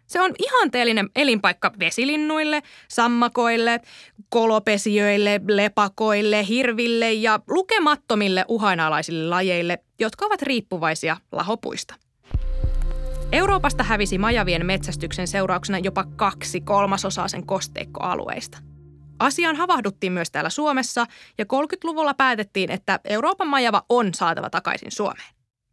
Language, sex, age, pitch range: Finnish, female, 20-39, 190-285 Hz